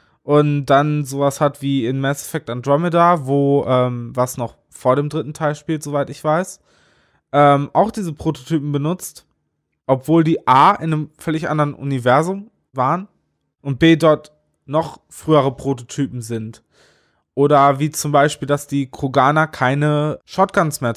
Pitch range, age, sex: 135-160 Hz, 20-39, male